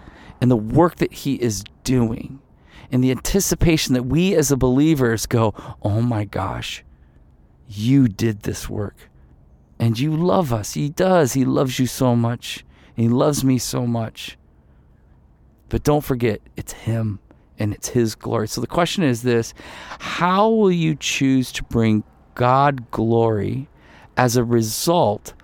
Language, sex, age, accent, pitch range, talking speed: English, male, 40-59, American, 100-130 Hz, 150 wpm